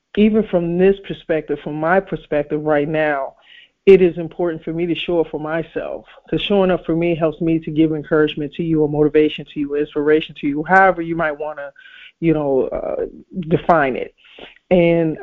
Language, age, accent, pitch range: English, 40-59, American, 155-175 Hz